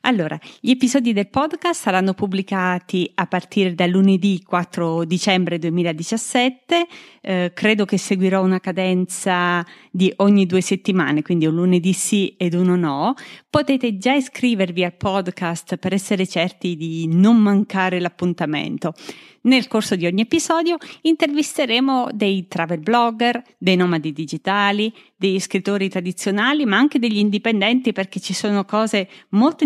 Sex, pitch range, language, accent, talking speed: female, 180-230 Hz, Italian, native, 135 wpm